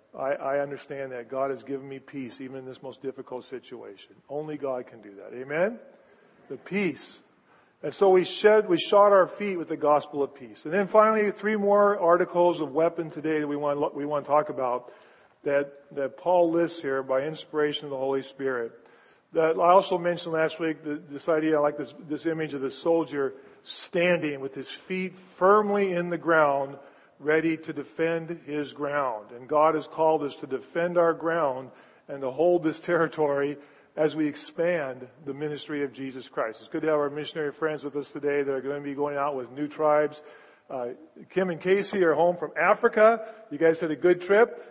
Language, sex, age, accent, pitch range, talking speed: English, male, 40-59, American, 140-170 Hz, 200 wpm